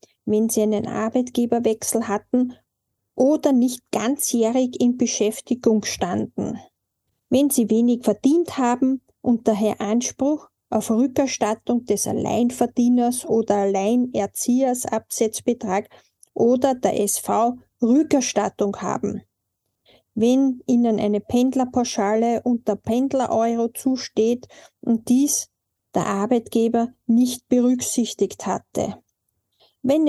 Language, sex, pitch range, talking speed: German, female, 220-255 Hz, 90 wpm